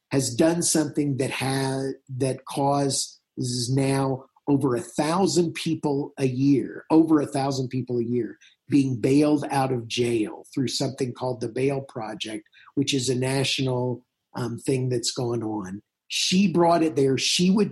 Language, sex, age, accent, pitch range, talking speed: English, male, 50-69, American, 125-155 Hz, 150 wpm